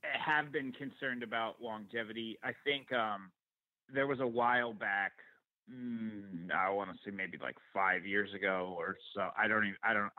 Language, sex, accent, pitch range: English, male, American, 100-115 Hz